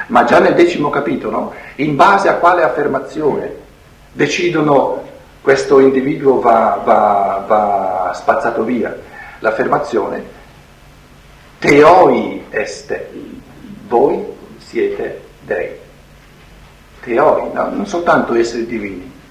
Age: 50-69